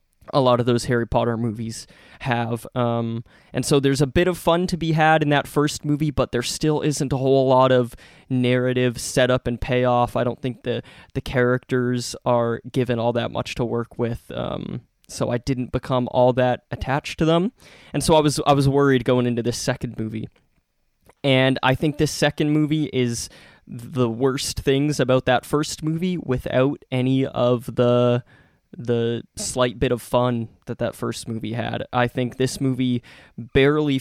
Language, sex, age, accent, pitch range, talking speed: English, male, 20-39, American, 120-145 Hz, 180 wpm